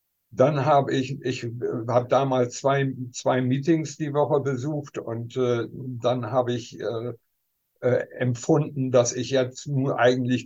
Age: 60-79